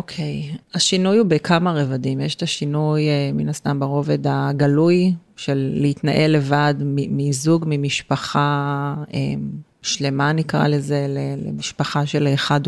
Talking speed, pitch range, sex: 115 wpm, 140-160 Hz, female